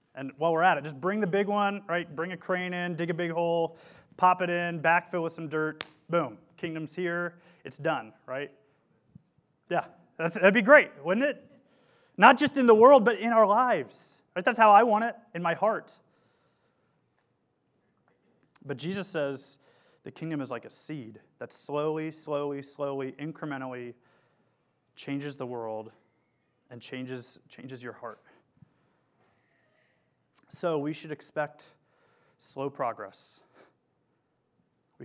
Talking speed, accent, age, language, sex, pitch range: 145 wpm, American, 30-49, English, male, 135-175 Hz